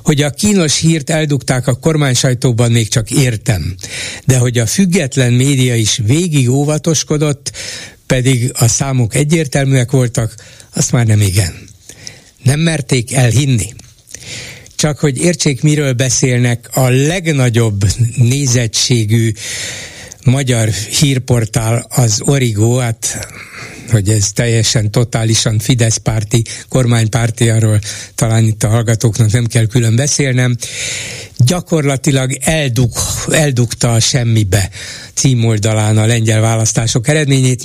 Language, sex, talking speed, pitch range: Hungarian, male, 110 wpm, 115-135 Hz